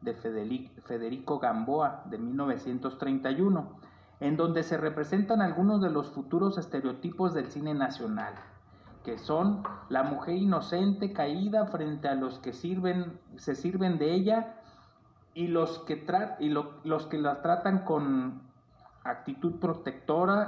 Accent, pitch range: Mexican, 135-180 Hz